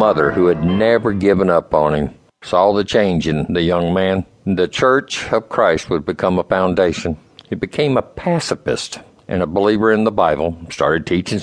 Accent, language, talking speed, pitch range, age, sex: American, English, 185 wpm, 90-110 Hz, 60-79, male